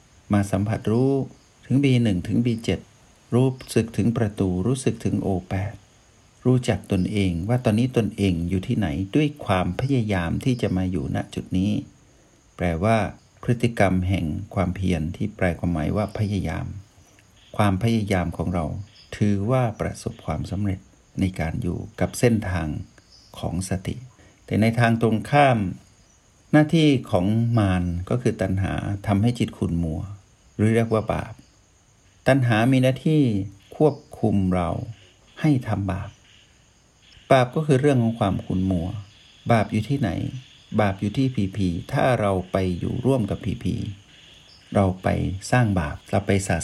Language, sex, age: Thai, male, 60-79